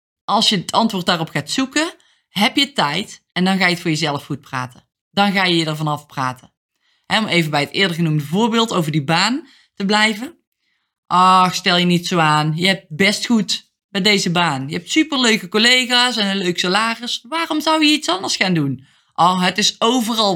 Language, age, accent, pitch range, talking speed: Dutch, 20-39, Dutch, 170-245 Hz, 205 wpm